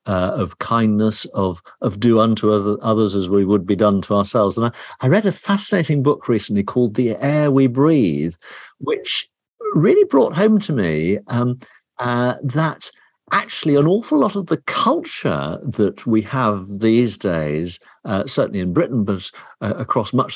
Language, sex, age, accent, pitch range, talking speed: English, male, 50-69, British, 100-140 Hz, 170 wpm